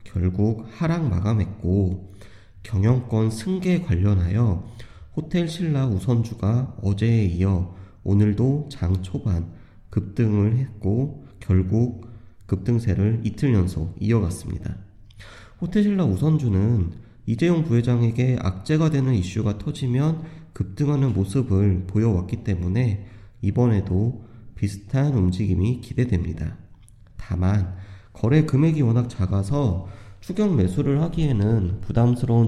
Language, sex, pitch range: Korean, male, 95-125 Hz